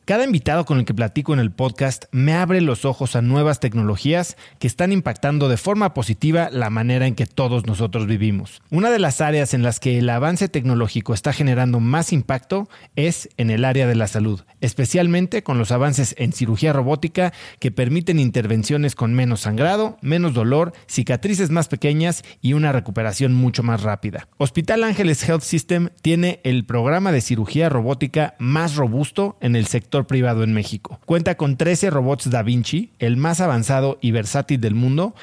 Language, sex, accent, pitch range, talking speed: Spanish, male, Mexican, 120-160 Hz, 180 wpm